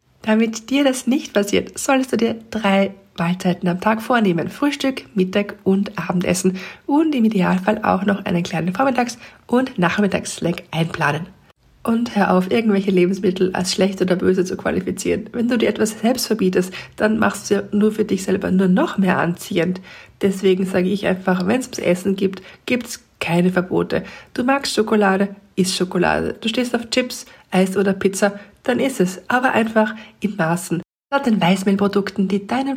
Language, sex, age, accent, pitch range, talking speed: German, female, 50-69, German, 185-230 Hz, 175 wpm